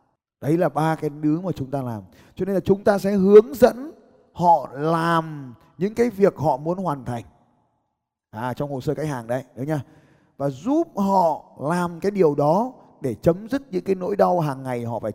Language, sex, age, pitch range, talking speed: Vietnamese, male, 20-39, 130-190 Hz, 210 wpm